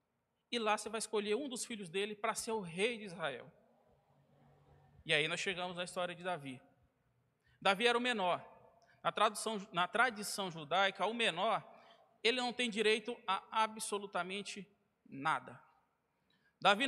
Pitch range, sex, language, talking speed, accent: 180-235 Hz, male, Portuguese, 145 wpm, Brazilian